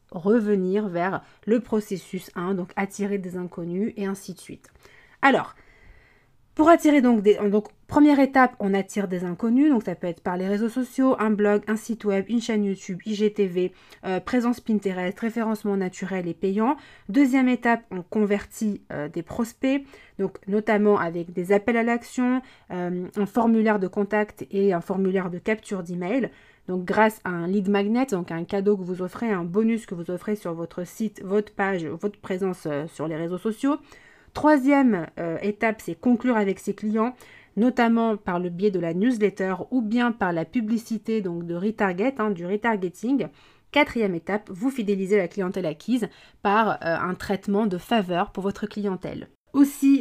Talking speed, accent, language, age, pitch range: 175 wpm, French, French, 30-49, 185-230 Hz